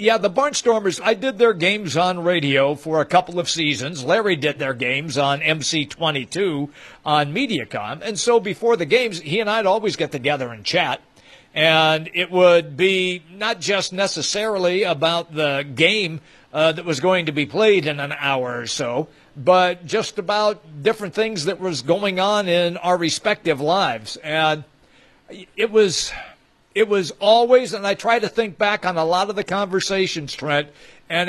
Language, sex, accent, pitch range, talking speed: English, male, American, 155-205 Hz, 175 wpm